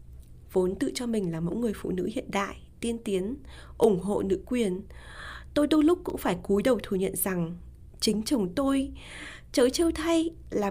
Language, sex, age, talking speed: Vietnamese, female, 20-39, 190 wpm